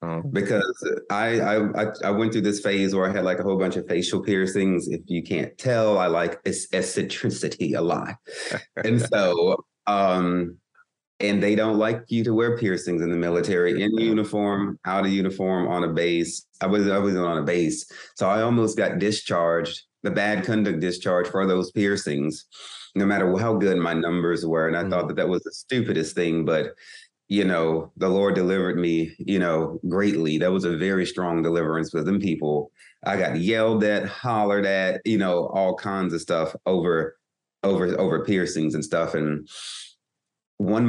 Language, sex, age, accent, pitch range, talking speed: English, male, 30-49, American, 85-100 Hz, 180 wpm